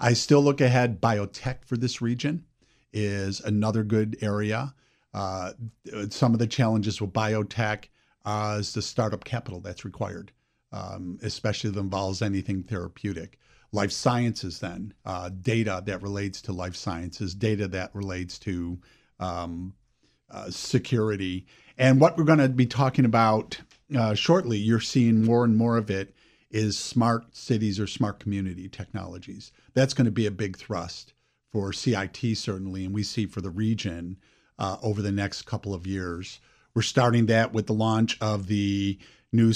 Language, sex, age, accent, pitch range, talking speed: English, male, 50-69, American, 100-115 Hz, 160 wpm